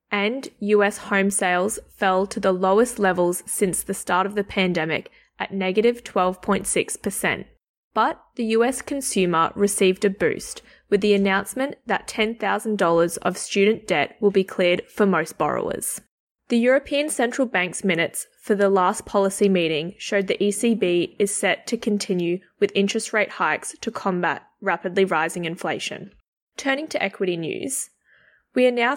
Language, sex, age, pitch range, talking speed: English, female, 20-39, 185-225 Hz, 150 wpm